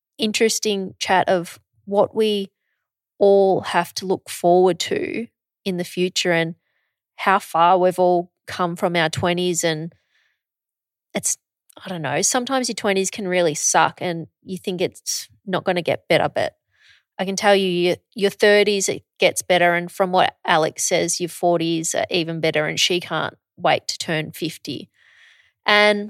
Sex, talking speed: female, 165 wpm